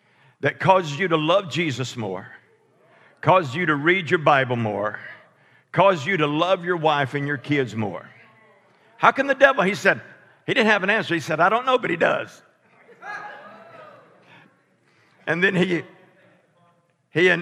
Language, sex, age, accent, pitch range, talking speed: English, male, 50-69, American, 110-180 Hz, 160 wpm